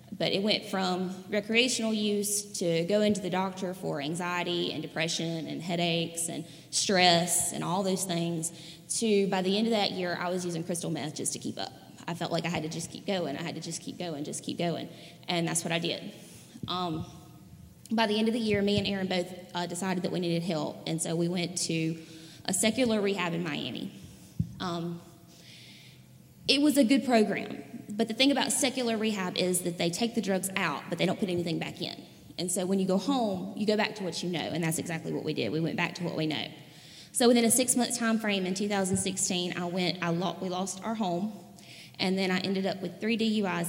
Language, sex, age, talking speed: English, female, 20-39, 225 wpm